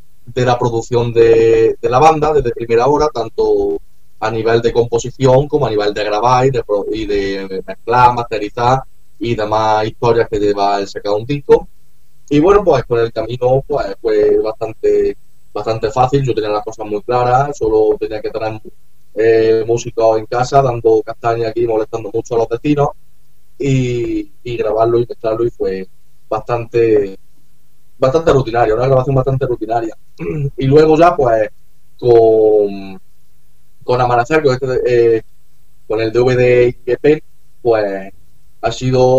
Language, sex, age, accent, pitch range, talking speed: Spanish, male, 30-49, Spanish, 115-145 Hz, 150 wpm